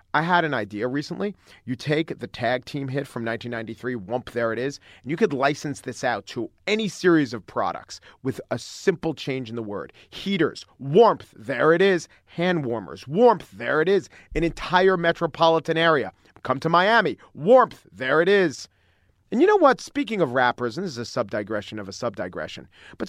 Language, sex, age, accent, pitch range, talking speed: English, male, 40-59, American, 115-165 Hz, 190 wpm